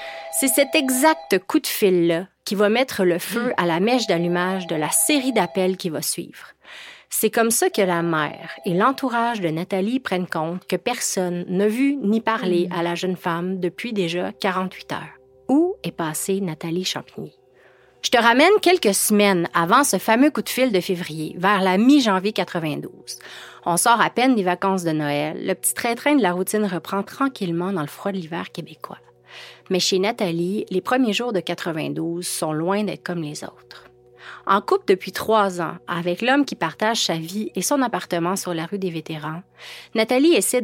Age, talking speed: 30-49, 190 wpm